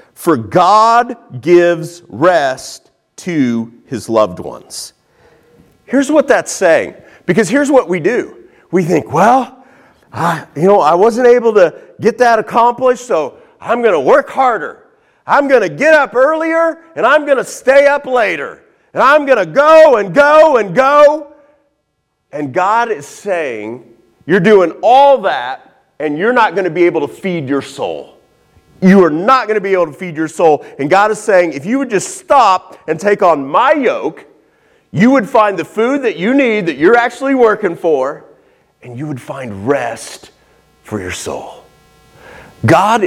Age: 40-59